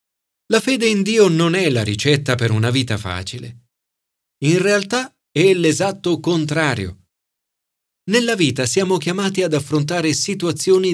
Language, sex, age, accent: Italian, male, 40-59, native